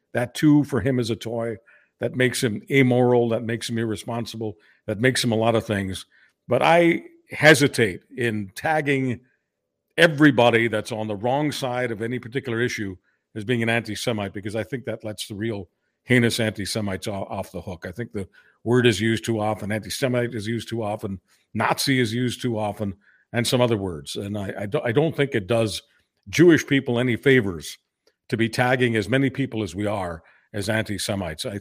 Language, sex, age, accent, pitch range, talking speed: English, male, 50-69, American, 110-130 Hz, 185 wpm